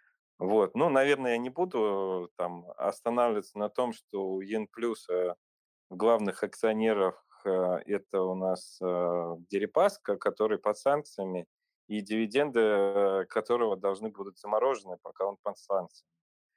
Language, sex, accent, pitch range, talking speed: Russian, male, native, 90-115 Hz, 130 wpm